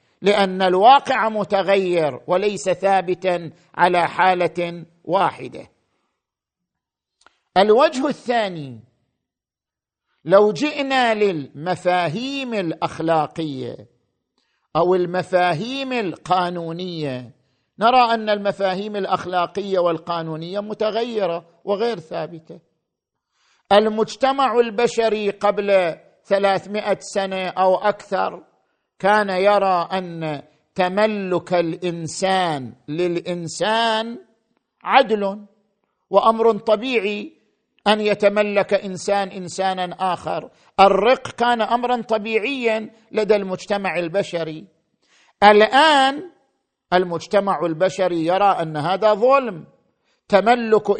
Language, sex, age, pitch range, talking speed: Arabic, male, 50-69, 175-220 Hz, 70 wpm